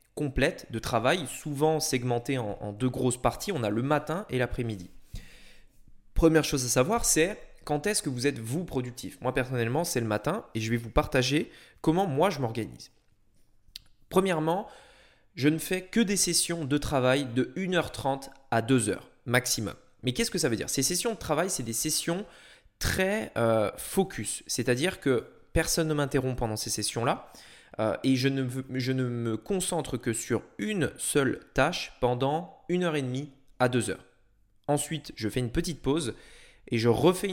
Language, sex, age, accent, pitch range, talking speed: French, male, 20-39, French, 120-160 Hz, 175 wpm